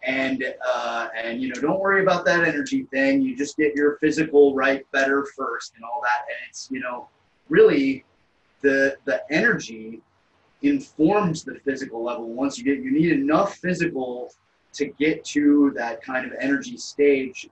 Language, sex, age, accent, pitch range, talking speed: English, male, 30-49, American, 120-170 Hz, 170 wpm